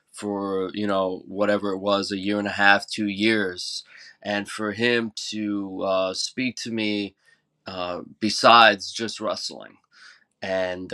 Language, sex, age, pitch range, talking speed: English, male, 20-39, 95-110 Hz, 145 wpm